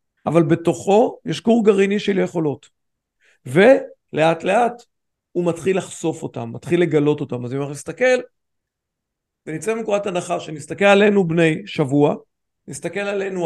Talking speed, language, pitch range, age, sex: 130 wpm, Hebrew, 160-210 Hz, 50-69, male